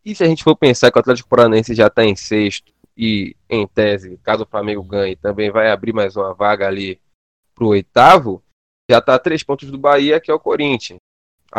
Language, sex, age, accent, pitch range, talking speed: Portuguese, male, 20-39, Brazilian, 95-130 Hz, 210 wpm